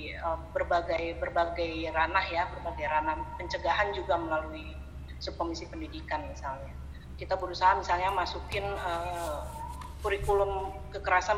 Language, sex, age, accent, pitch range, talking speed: Indonesian, female, 30-49, native, 150-195 Hz, 100 wpm